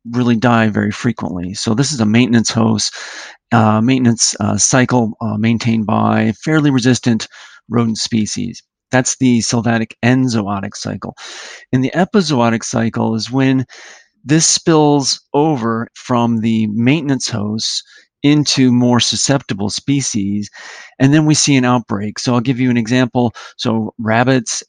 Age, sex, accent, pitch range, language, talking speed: 40-59, male, American, 110-125 Hz, English, 140 wpm